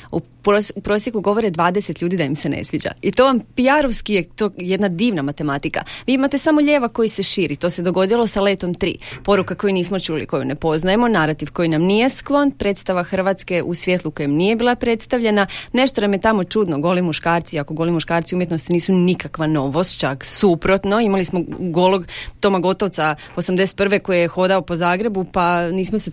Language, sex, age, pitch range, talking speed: Croatian, female, 30-49, 170-210 Hz, 190 wpm